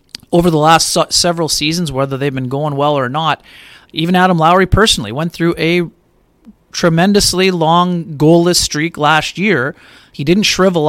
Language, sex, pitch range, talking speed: English, male, 130-160 Hz, 155 wpm